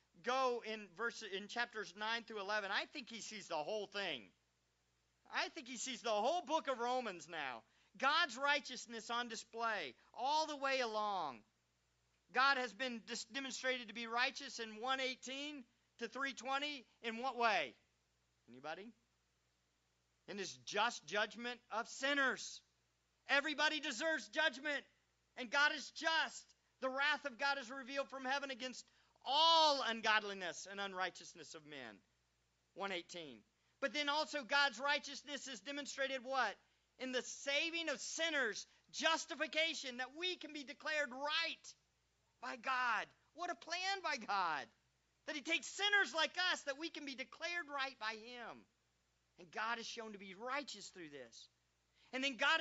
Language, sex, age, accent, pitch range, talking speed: English, male, 50-69, American, 210-295 Hz, 150 wpm